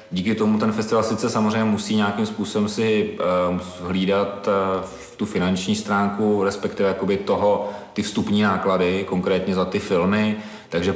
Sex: male